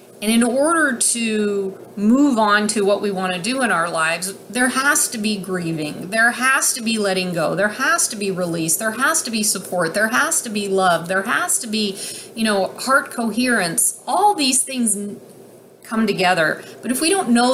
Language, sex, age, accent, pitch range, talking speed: English, female, 30-49, American, 190-230 Hz, 200 wpm